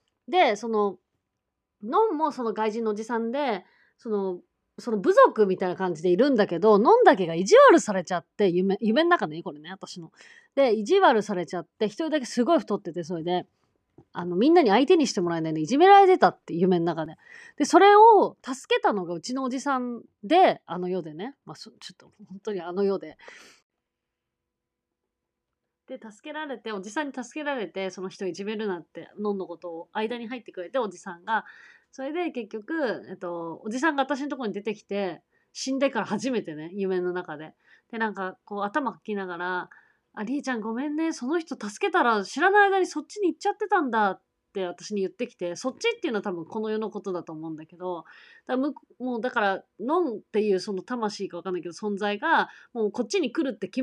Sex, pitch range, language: female, 185-285 Hz, Japanese